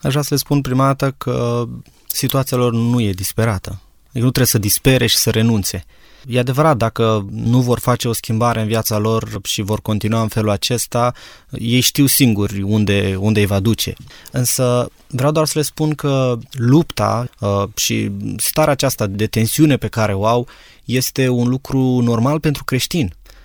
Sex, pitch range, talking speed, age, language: male, 110-140 Hz, 175 wpm, 20-39, Romanian